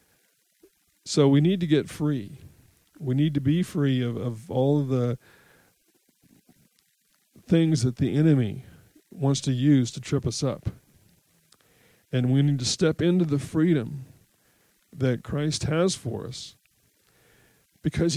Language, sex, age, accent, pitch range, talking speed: English, male, 50-69, American, 125-165 Hz, 135 wpm